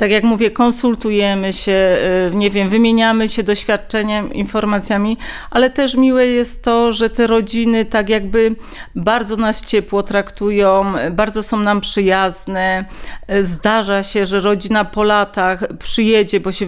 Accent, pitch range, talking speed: native, 195-230 Hz, 130 wpm